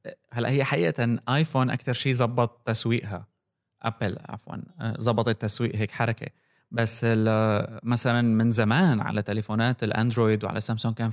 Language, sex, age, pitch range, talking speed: Arabic, male, 20-39, 115-140 Hz, 140 wpm